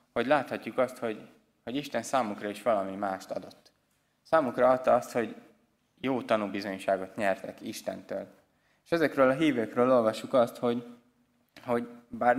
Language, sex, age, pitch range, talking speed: Hungarian, male, 20-39, 105-130 Hz, 135 wpm